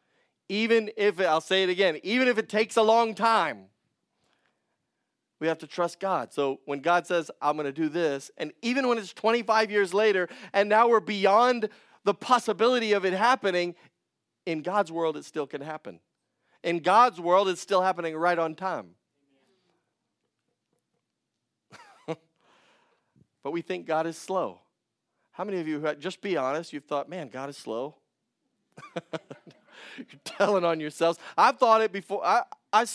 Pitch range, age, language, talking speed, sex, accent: 165-220 Hz, 40-59, English, 160 wpm, male, American